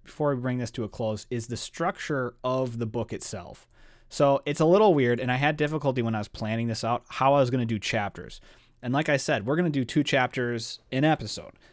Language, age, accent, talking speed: English, 30-49, American, 245 wpm